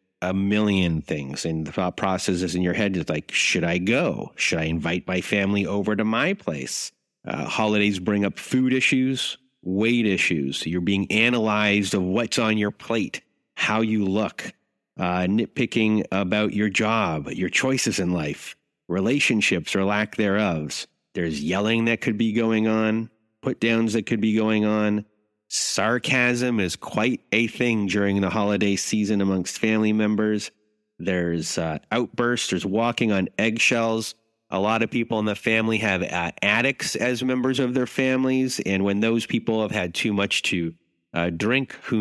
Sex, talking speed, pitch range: male, 165 wpm, 95-115 Hz